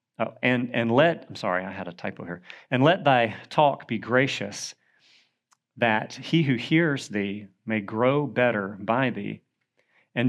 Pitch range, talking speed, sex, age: 105-145 Hz, 165 wpm, male, 40-59